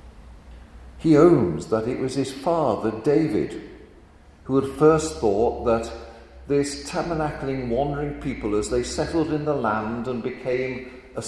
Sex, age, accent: male, 50-69, British